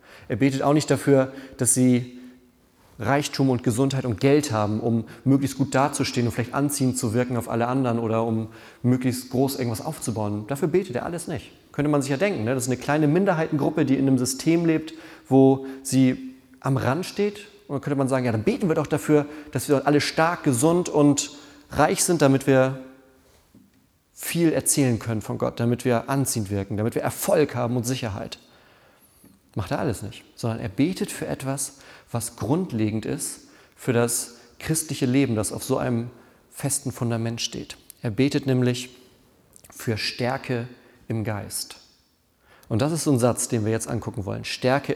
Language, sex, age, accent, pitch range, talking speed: German, male, 30-49, German, 120-140 Hz, 180 wpm